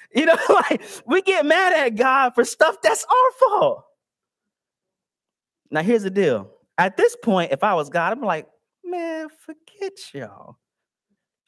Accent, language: American, English